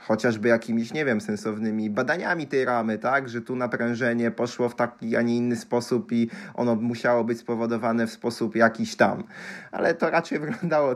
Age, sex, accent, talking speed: 20-39, male, native, 175 wpm